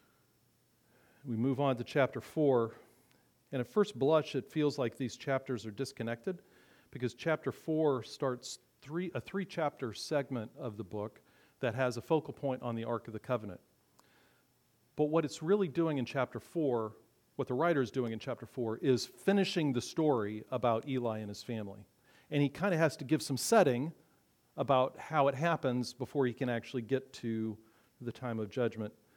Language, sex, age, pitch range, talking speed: English, male, 40-59, 115-140 Hz, 180 wpm